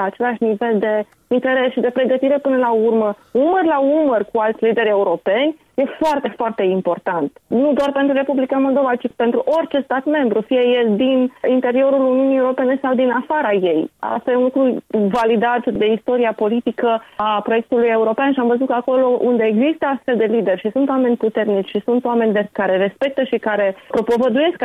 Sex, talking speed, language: female, 180 wpm, Romanian